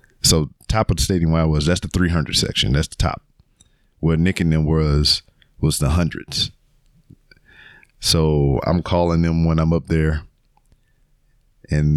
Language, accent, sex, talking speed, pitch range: English, American, male, 155 wpm, 80-110 Hz